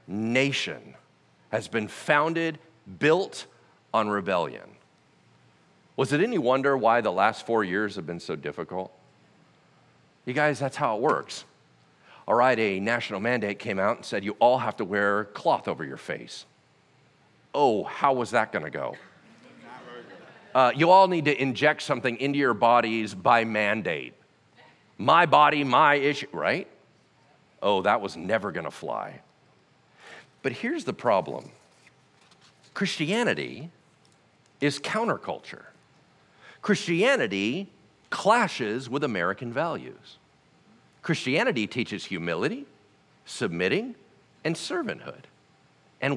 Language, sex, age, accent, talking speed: English, male, 40-59, American, 120 wpm